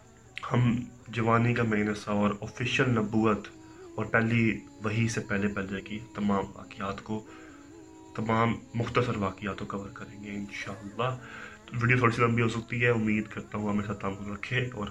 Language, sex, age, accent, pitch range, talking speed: English, male, 20-39, Indian, 100-115 Hz, 155 wpm